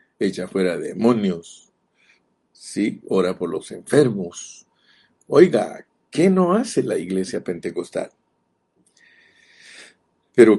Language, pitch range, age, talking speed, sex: Spanish, 105-155 Hz, 50-69, 90 wpm, male